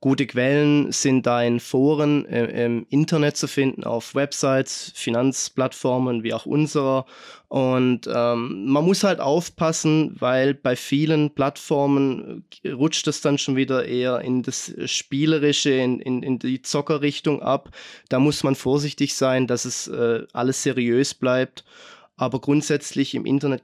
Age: 20-39